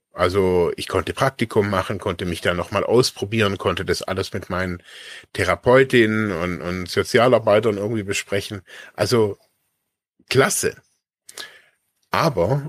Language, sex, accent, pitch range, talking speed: German, male, German, 105-130 Hz, 115 wpm